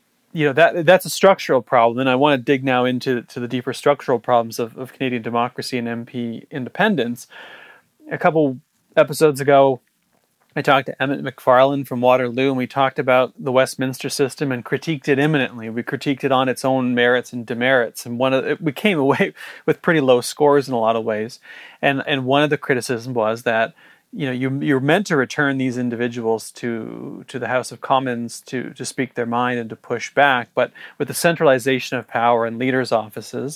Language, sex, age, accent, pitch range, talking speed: English, male, 40-59, American, 120-145 Hz, 205 wpm